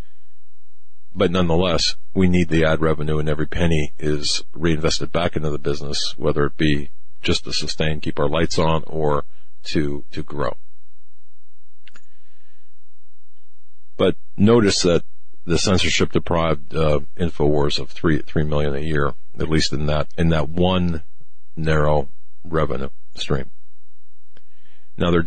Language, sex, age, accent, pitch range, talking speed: English, male, 50-69, American, 70-80 Hz, 135 wpm